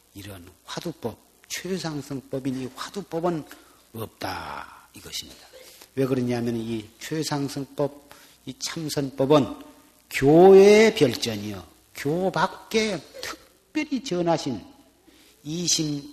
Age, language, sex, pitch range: 50-69, Korean, male, 130-175 Hz